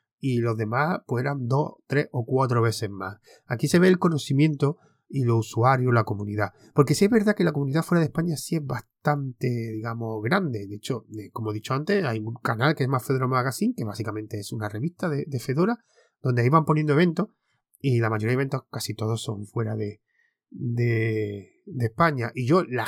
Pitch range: 110-150 Hz